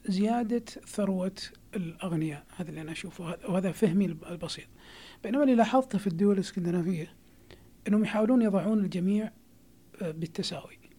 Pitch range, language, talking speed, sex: 170-200 Hz, Arabic, 115 wpm, male